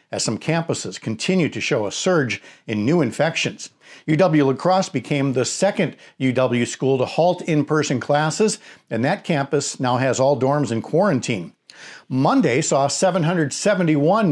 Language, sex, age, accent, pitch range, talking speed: English, male, 50-69, American, 130-175 Hz, 145 wpm